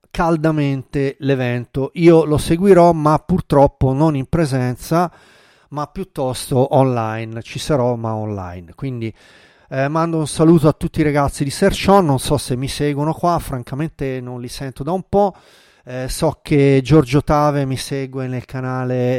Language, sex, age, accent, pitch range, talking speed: Italian, male, 40-59, native, 130-165 Hz, 155 wpm